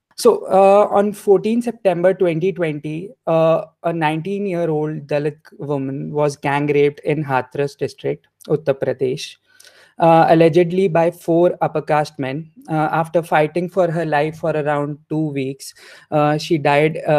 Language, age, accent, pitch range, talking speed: English, 20-39, Indian, 155-180 Hz, 130 wpm